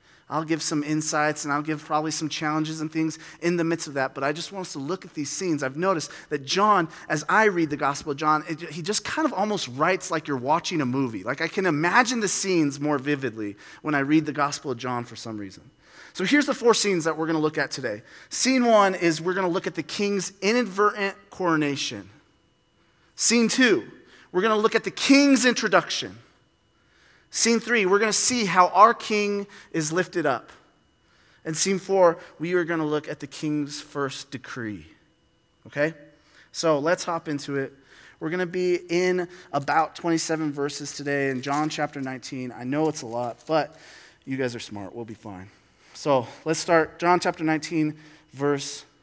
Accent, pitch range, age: American, 140-185 Hz, 30-49